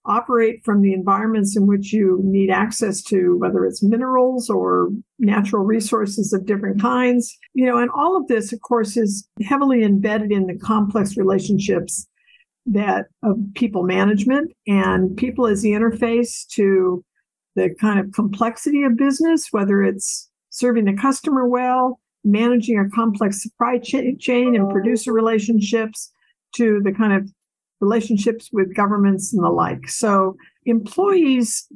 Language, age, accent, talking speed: English, 60-79, American, 145 wpm